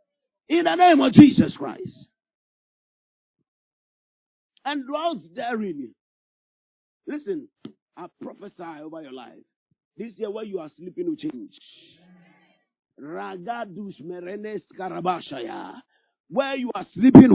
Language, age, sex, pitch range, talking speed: English, 50-69, male, 210-305 Hz, 95 wpm